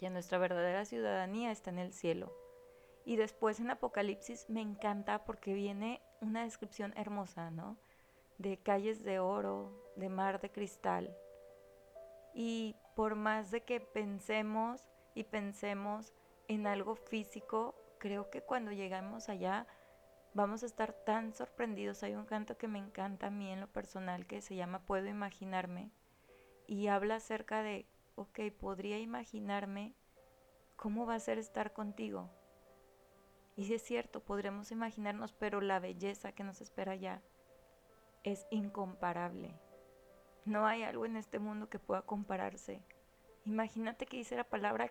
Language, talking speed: Spanish, 145 wpm